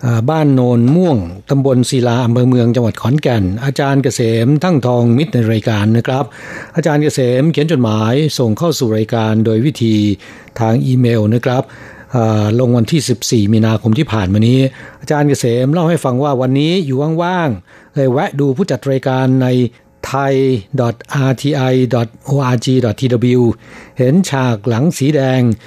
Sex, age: male, 60-79